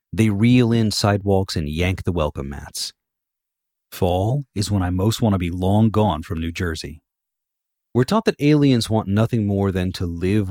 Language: English